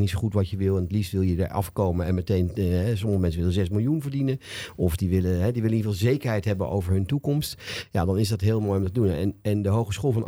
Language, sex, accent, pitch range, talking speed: Dutch, male, Dutch, 95-120 Hz, 300 wpm